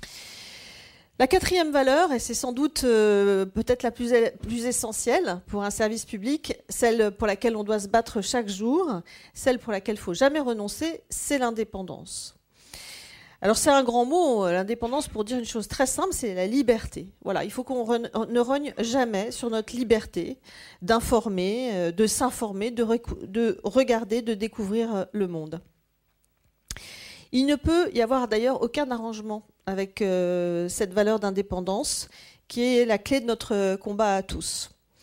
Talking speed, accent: 160 wpm, French